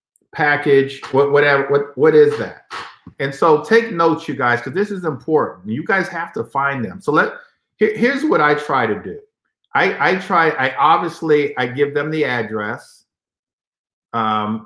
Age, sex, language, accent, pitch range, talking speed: 50-69, male, English, American, 120-155 Hz, 170 wpm